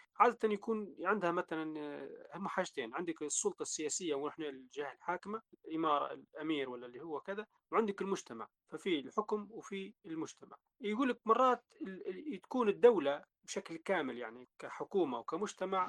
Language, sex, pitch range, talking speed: Arabic, male, 170-245 Hz, 130 wpm